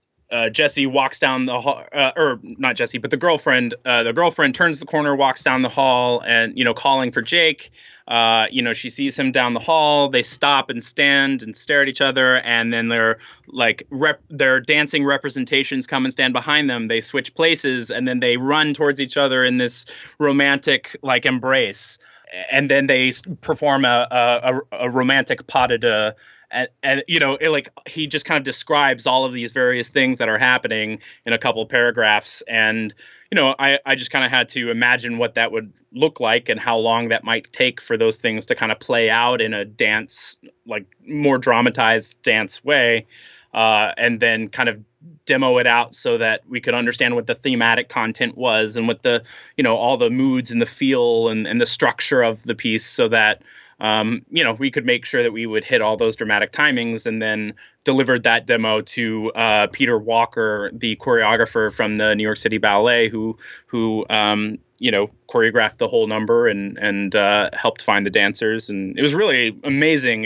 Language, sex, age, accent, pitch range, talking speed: English, male, 20-39, American, 115-140 Hz, 205 wpm